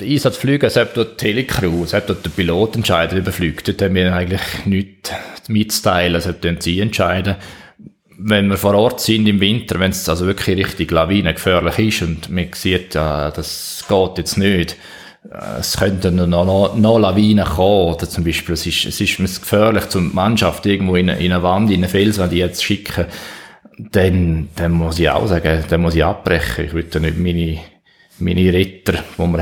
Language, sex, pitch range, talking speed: German, male, 85-100 Hz, 195 wpm